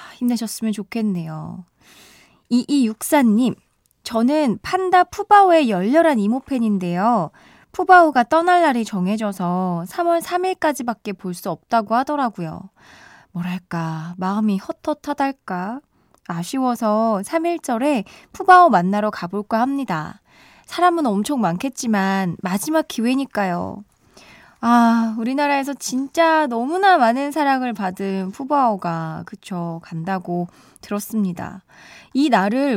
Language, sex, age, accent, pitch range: Korean, female, 20-39, native, 190-275 Hz